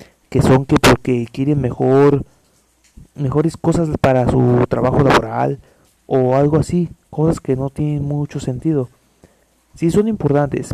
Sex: male